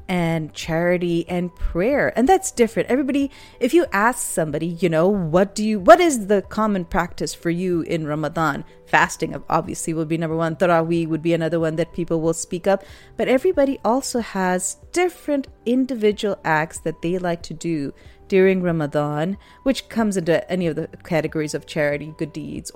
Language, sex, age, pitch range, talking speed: English, female, 30-49, 160-210 Hz, 175 wpm